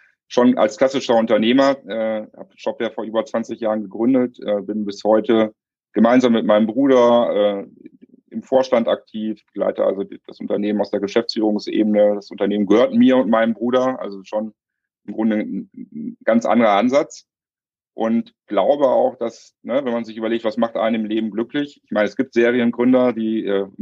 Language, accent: German, German